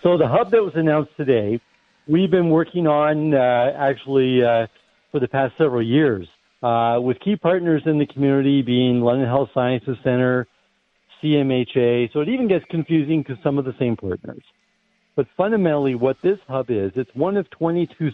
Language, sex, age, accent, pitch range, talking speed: English, male, 50-69, American, 115-150 Hz, 175 wpm